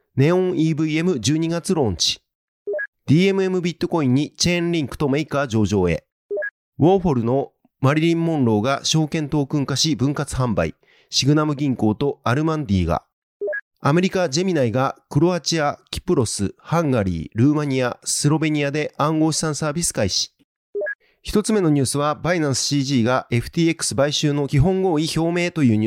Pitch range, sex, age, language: 135-170 Hz, male, 30-49, Japanese